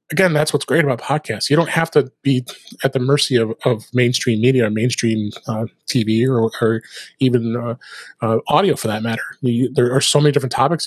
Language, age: English, 30-49